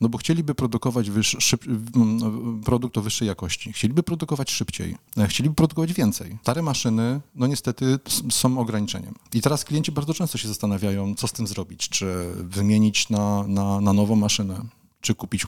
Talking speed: 150 wpm